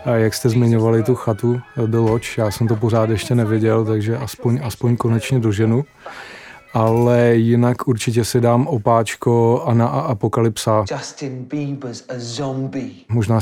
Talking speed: 135 wpm